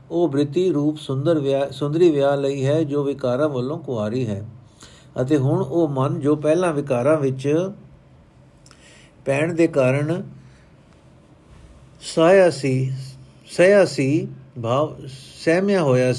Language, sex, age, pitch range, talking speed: Punjabi, male, 50-69, 130-155 Hz, 110 wpm